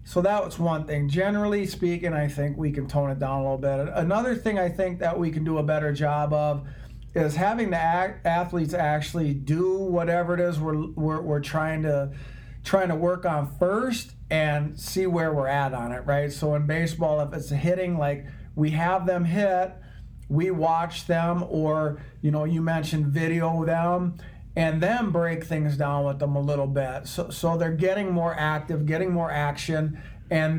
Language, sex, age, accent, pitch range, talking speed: English, male, 50-69, American, 145-170 Hz, 190 wpm